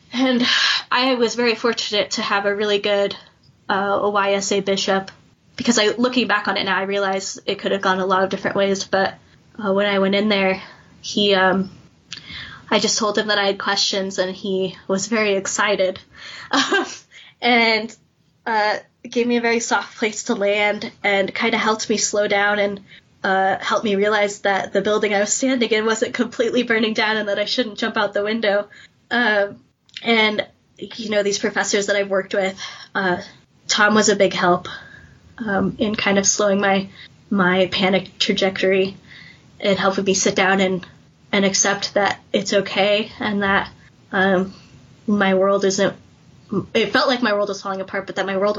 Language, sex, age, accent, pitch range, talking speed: English, female, 10-29, American, 195-215 Hz, 185 wpm